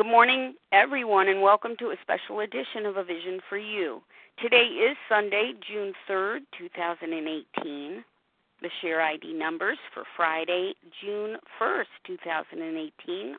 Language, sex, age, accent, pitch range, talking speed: English, female, 40-59, American, 170-240 Hz, 130 wpm